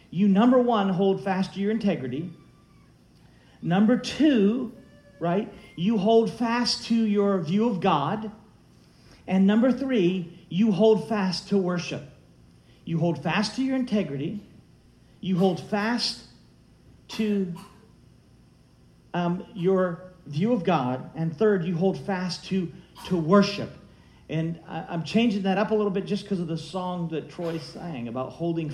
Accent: American